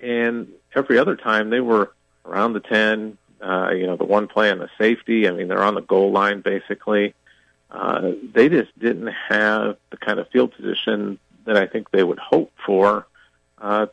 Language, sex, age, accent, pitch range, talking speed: English, male, 40-59, American, 100-115 Hz, 190 wpm